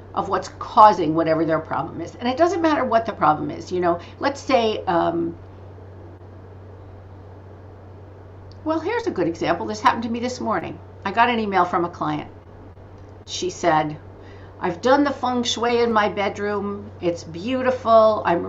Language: English